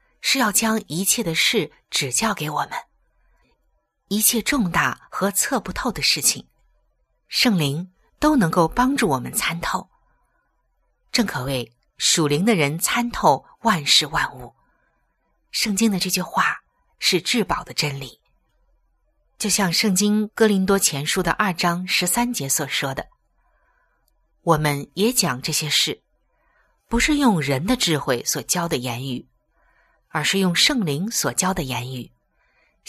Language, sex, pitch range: Chinese, female, 150-225 Hz